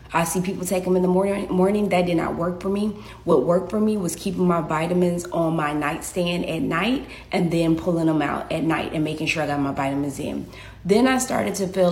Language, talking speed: English, 240 wpm